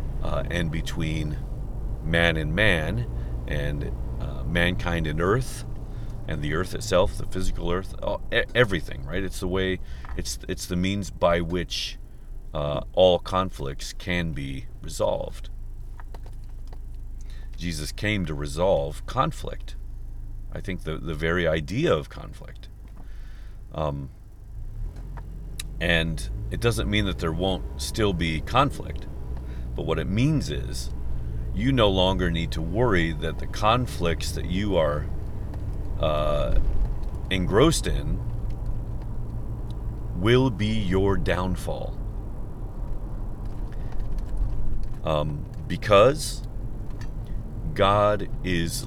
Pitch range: 80-110 Hz